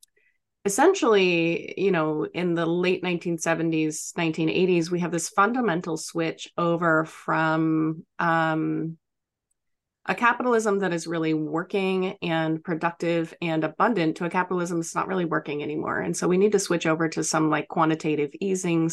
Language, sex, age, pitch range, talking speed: English, female, 30-49, 160-185 Hz, 145 wpm